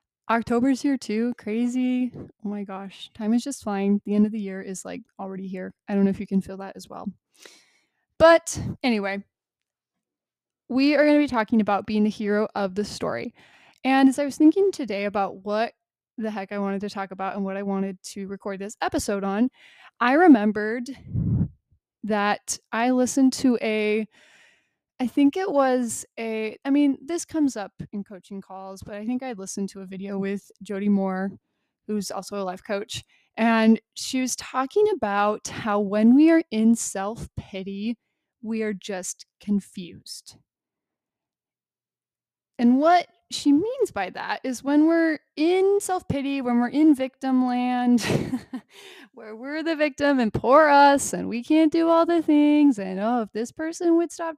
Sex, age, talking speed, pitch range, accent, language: female, 20-39, 175 wpm, 205-285 Hz, American, English